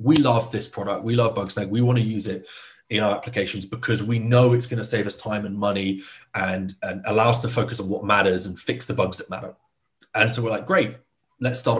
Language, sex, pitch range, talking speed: English, male, 105-125 Hz, 245 wpm